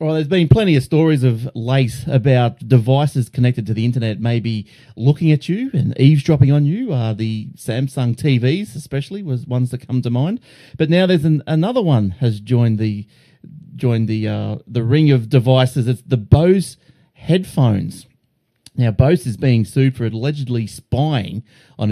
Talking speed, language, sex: 170 wpm, English, male